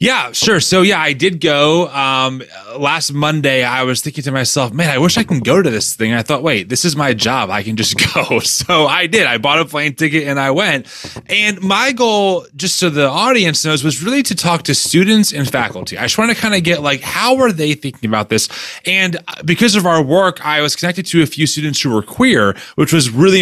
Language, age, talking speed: English, 20-39, 245 wpm